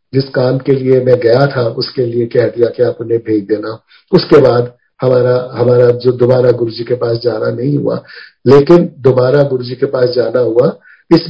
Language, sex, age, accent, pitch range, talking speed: Hindi, male, 50-69, native, 125-165 Hz, 190 wpm